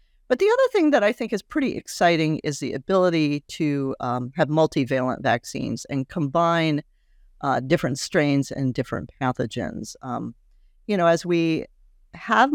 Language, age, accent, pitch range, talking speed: English, 50-69, American, 130-175 Hz, 155 wpm